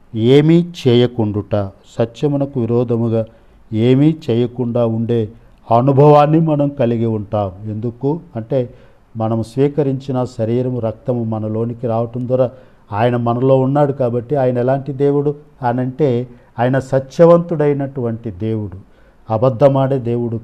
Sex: male